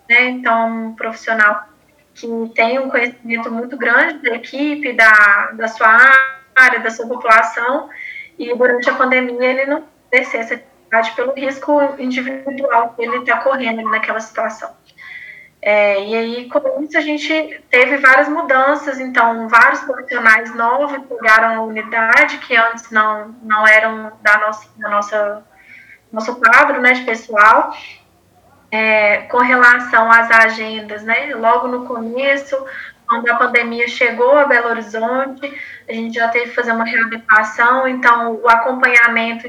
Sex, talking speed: female, 140 wpm